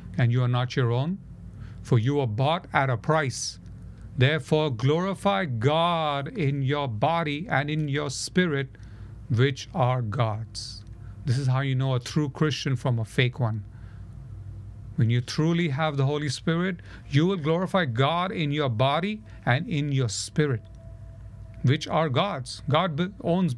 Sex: male